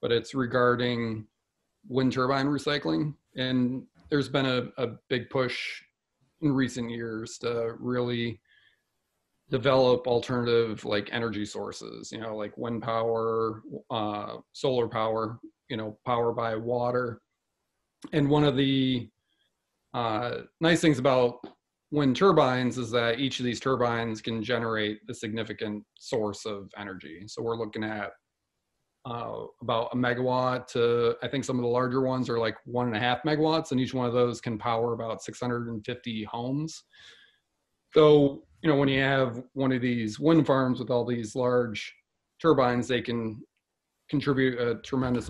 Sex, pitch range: male, 115-130 Hz